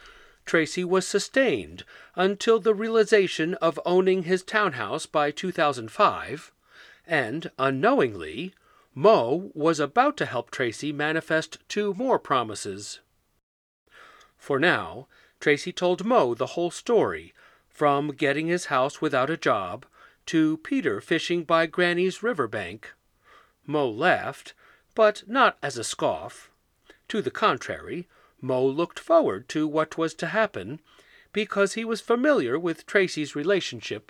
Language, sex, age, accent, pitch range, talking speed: English, male, 40-59, American, 145-200 Hz, 125 wpm